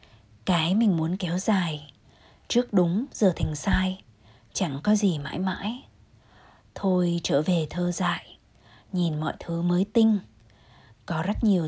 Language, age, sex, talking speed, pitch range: Vietnamese, 20-39, female, 145 wpm, 155-195 Hz